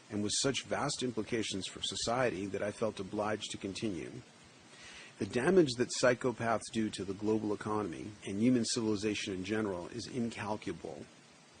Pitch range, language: 100-120 Hz, English